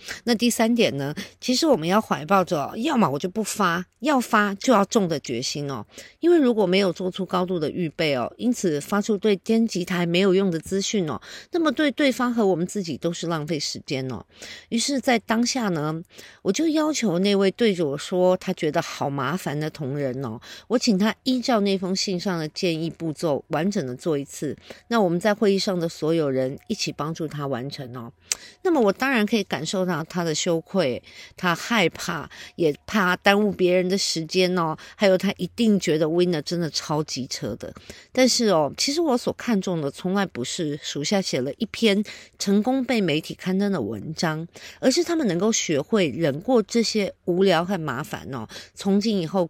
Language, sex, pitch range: Chinese, female, 160-220 Hz